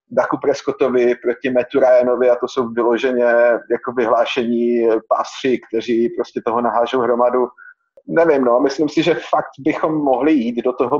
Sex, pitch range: male, 125-155 Hz